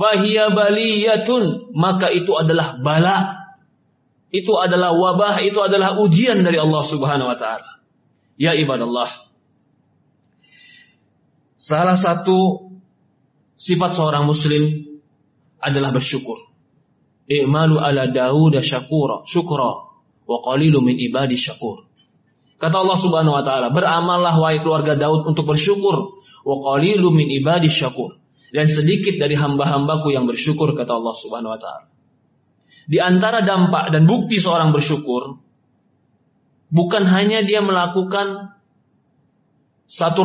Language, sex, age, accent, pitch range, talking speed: Indonesian, male, 30-49, native, 150-205 Hz, 105 wpm